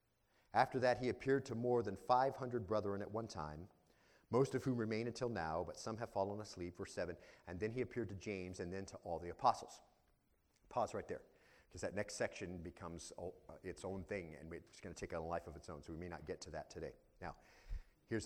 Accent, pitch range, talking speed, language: American, 95-125 Hz, 230 wpm, English